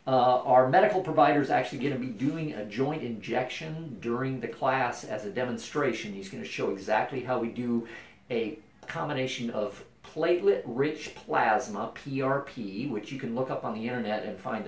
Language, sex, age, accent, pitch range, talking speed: English, male, 50-69, American, 110-140 Hz, 175 wpm